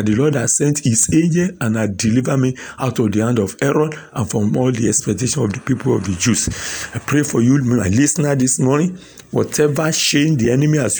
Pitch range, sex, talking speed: 120-155 Hz, male, 220 wpm